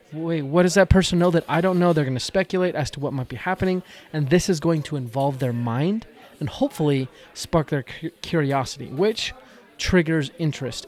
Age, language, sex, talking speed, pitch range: 20-39, English, male, 200 wpm, 140-170 Hz